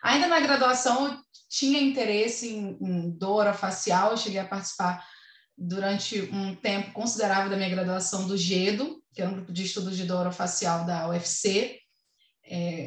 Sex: female